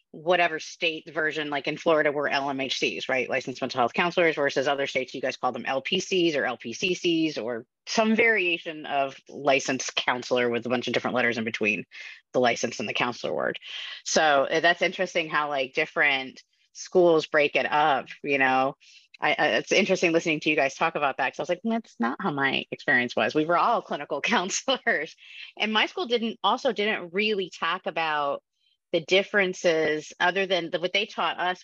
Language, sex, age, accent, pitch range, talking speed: English, female, 30-49, American, 140-180 Hz, 190 wpm